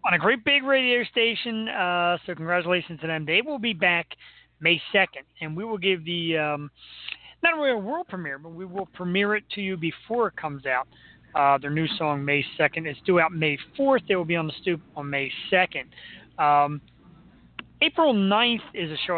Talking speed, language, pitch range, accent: 205 wpm, English, 155-200 Hz, American